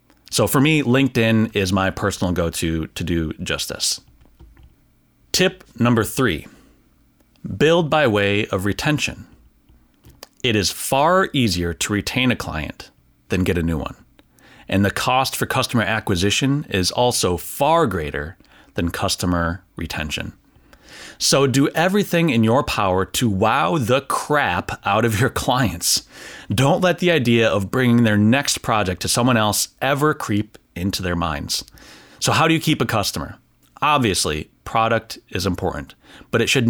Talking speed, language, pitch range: 150 wpm, English, 95-125 Hz